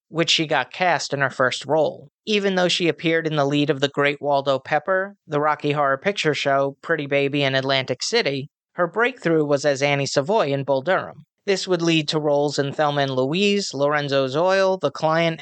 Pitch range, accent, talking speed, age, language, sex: 145-180 Hz, American, 200 wpm, 30-49, English, male